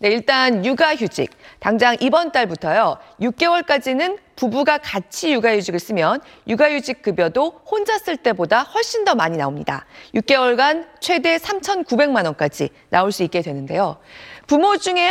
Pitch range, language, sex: 190-295 Hz, Korean, female